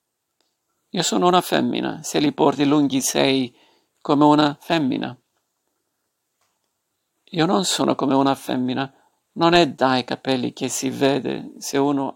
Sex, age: male, 50-69